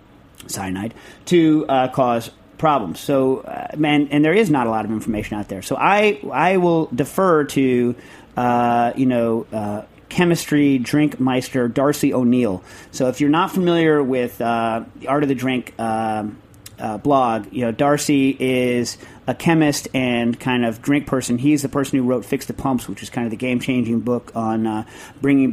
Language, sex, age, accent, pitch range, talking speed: English, male, 40-59, American, 115-145 Hz, 185 wpm